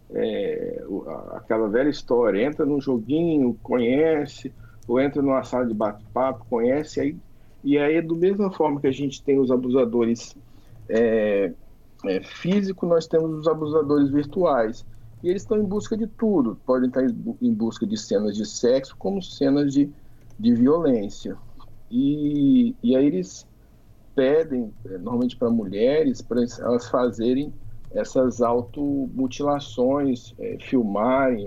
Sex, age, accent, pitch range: male, 50-69, Brazilian, 115-155 Hz